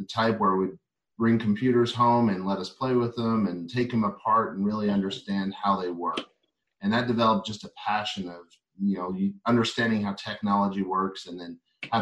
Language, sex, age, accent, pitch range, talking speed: English, male, 30-49, American, 95-115 Hz, 195 wpm